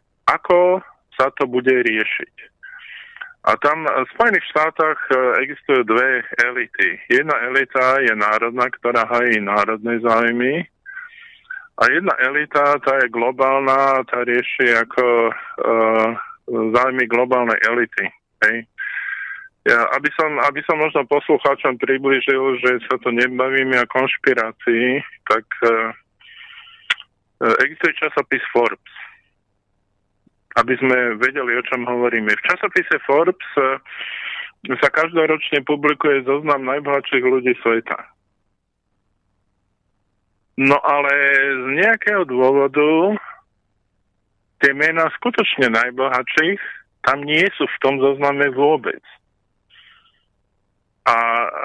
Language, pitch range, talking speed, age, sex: Slovak, 115-155 Hz, 100 wpm, 20-39, male